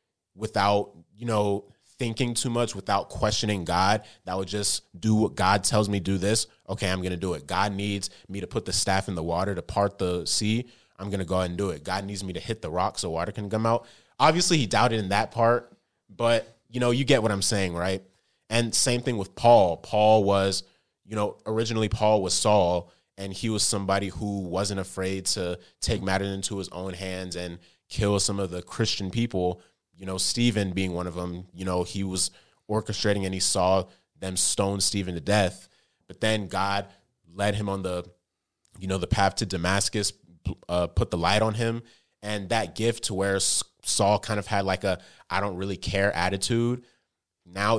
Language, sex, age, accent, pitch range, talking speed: English, male, 20-39, American, 95-110 Hz, 205 wpm